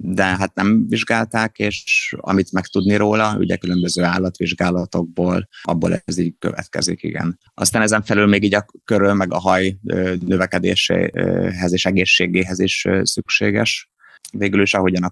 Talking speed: 140 wpm